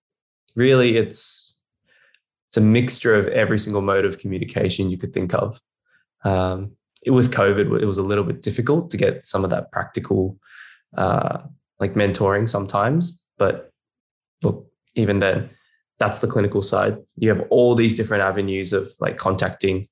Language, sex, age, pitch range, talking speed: English, male, 10-29, 100-120 Hz, 155 wpm